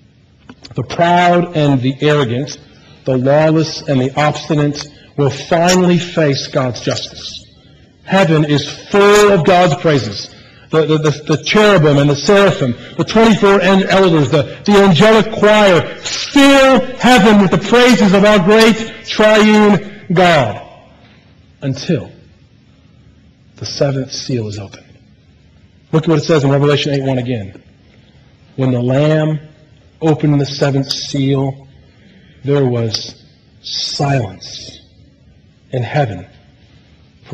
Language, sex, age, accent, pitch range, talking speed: English, male, 40-59, American, 130-170 Hz, 120 wpm